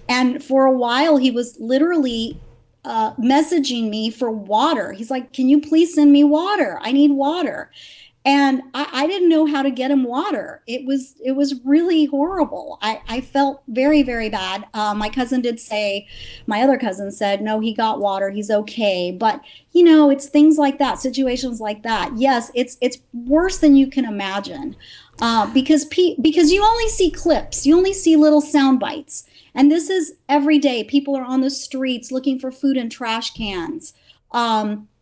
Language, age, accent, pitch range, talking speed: English, 40-59, American, 230-290 Hz, 185 wpm